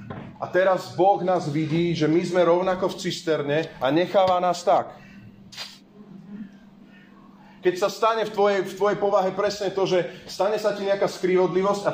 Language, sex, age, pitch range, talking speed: Slovak, male, 30-49, 135-180 Hz, 160 wpm